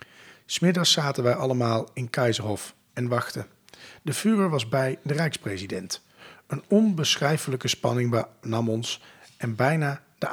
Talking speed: 130 wpm